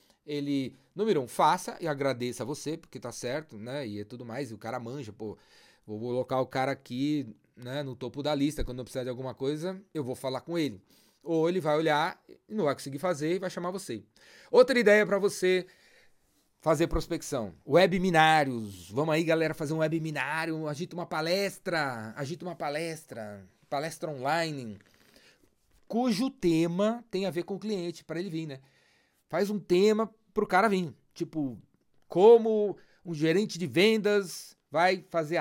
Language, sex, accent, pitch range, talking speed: Portuguese, male, Brazilian, 130-185 Hz, 170 wpm